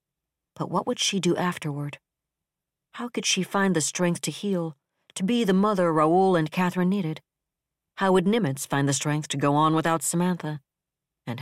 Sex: female